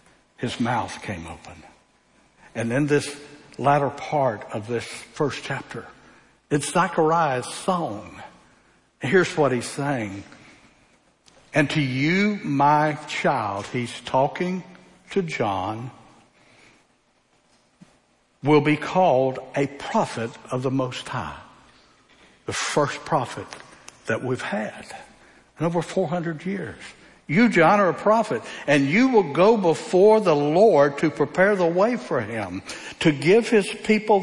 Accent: American